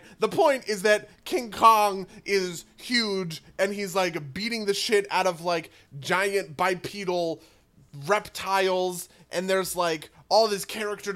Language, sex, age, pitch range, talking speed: English, male, 20-39, 150-200 Hz, 140 wpm